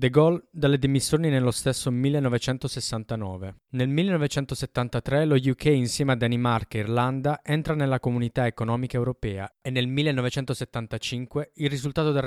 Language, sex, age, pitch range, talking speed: Italian, male, 20-39, 115-140 Hz, 130 wpm